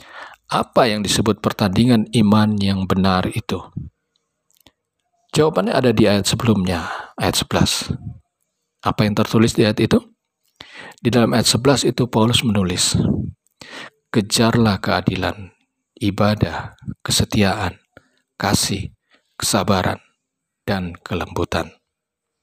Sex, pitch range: male, 100-125 Hz